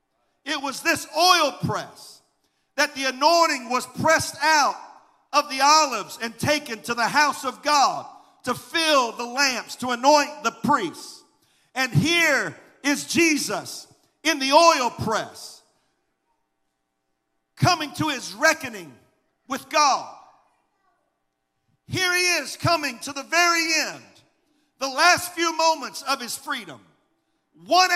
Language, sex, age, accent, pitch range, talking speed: English, male, 50-69, American, 275-325 Hz, 125 wpm